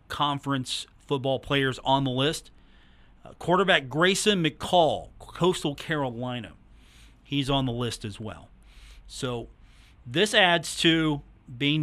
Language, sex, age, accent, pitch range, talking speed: English, male, 40-59, American, 125-155 Hz, 115 wpm